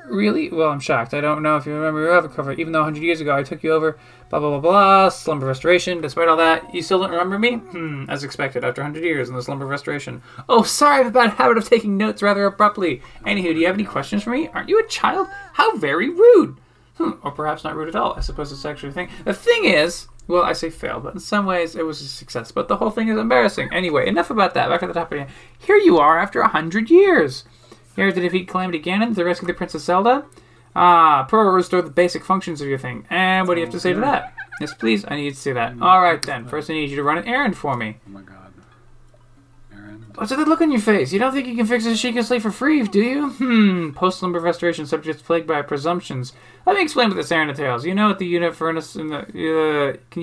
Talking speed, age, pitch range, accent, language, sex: 265 wpm, 20-39, 145-205 Hz, American, English, male